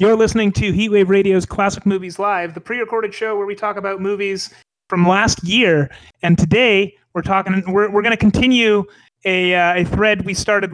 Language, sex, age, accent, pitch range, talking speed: English, male, 30-49, American, 170-210 Hz, 190 wpm